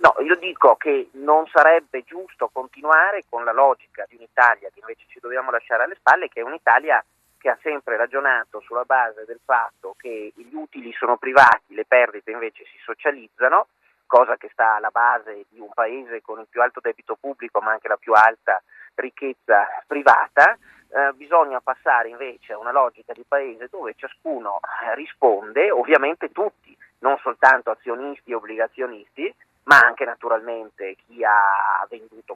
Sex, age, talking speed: male, 40-59, 160 wpm